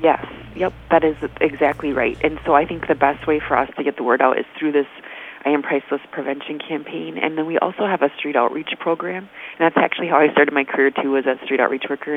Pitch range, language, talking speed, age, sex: 135-155 Hz, English, 250 wpm, 30-49, female